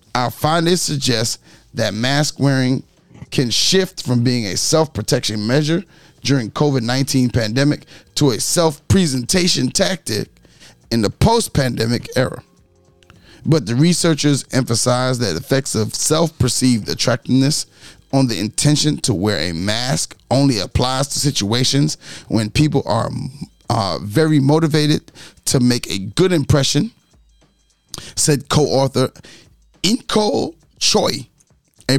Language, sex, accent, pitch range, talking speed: English, male, American, 110-145 Hz, 115 wpm